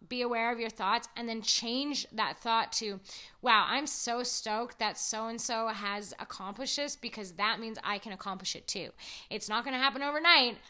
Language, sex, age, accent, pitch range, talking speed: English, female, 20-39, American, 210-260 Hz, 190 wpm